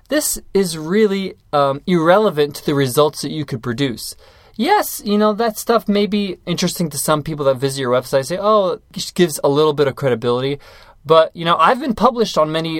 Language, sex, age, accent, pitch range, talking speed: English, male, 20-39, American, 145-205 Hz, 205 wpm